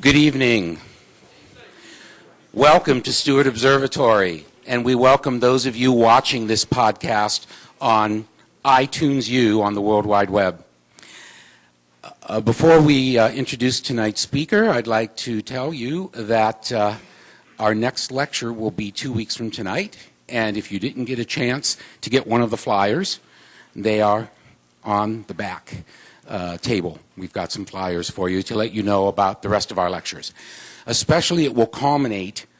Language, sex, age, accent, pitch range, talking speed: English, male, 50-69, American, 105-125 Hz, 160 wpm